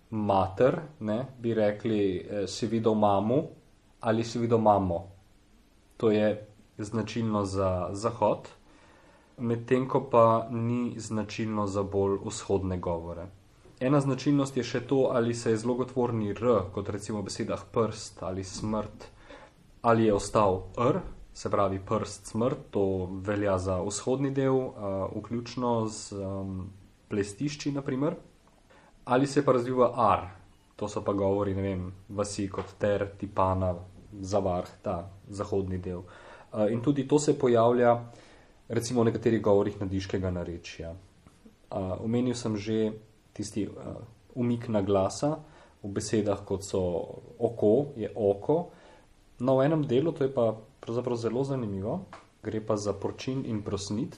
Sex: male